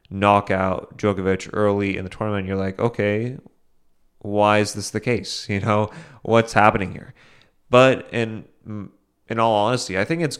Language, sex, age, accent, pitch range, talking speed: English, male, 30-49, American, 105-130 Hz, 160 wpm